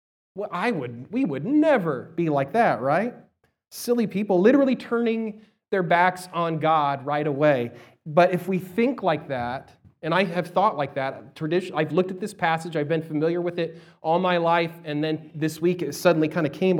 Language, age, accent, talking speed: English, 30-49, American, 195 wpm